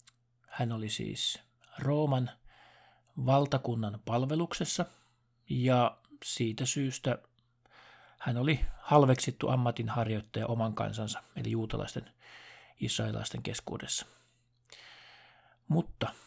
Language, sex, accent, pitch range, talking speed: Finnish, male, native, 115-130 Hz, 75 wpm